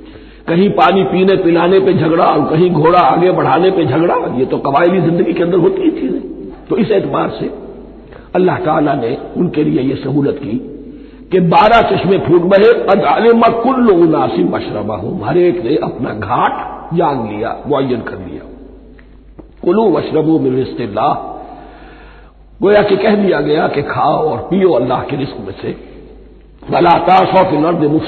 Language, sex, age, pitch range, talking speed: Hindi, male, 60-79, 170-265 Hz, 160 wpm